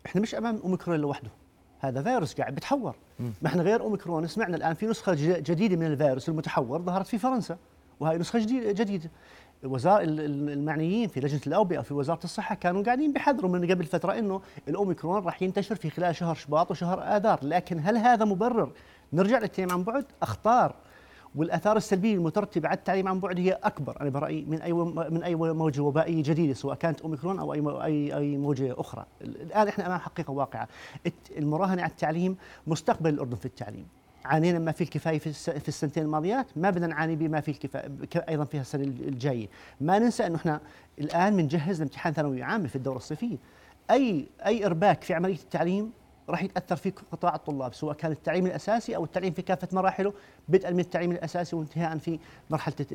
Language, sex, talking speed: Arabic, male, 175 wpm